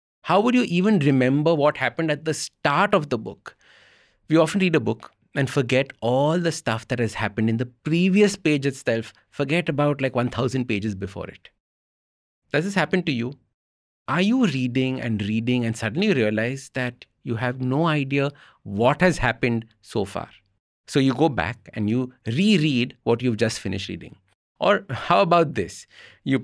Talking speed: 175 wpm